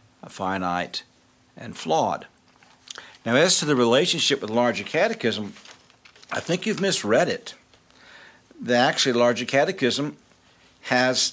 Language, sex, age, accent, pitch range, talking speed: English, male, 60-79, American, 110-130 Hz, 110 wpm